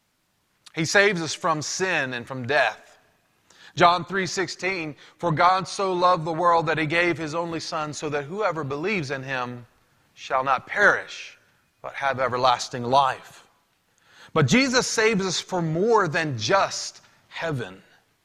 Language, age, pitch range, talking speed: English, 30-49, 130-175 Hz, 150 wpm